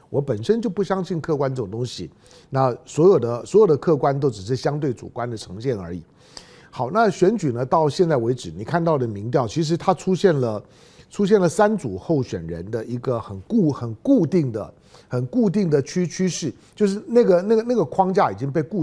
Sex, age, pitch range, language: male, 50-69, 135-210 Hz, Chinese